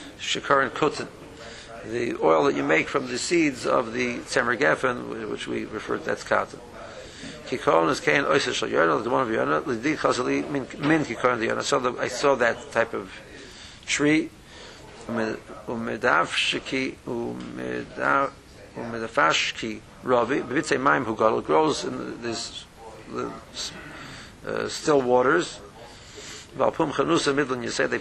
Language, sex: English, male